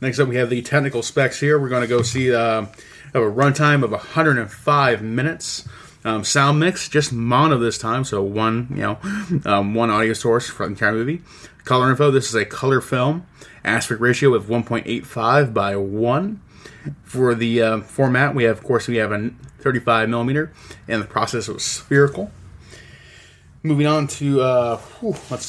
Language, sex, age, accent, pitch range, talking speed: English, male, 20-39, American, 115-140 Hz, 175 wpm